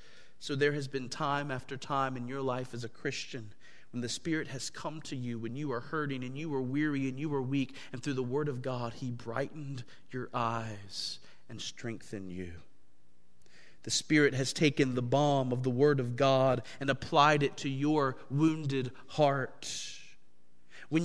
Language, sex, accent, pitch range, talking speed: English, male, American, 120-155 Hz, 185 wpm